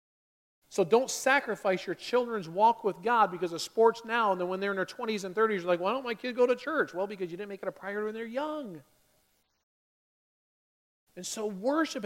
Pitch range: 160-215 Hz